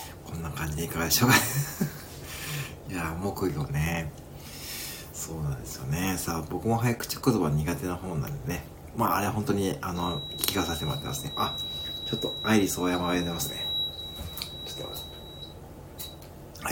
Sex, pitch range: male, 75-115 Hz